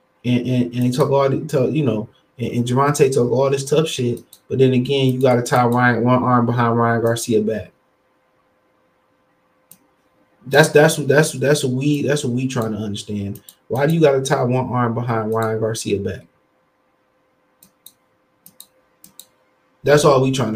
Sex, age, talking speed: male, 20-39, 170 wpm